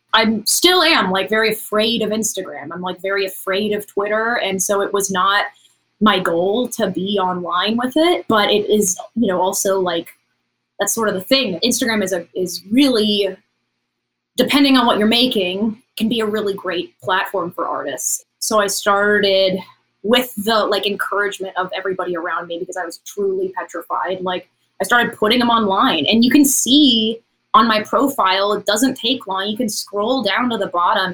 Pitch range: 190-230 Hz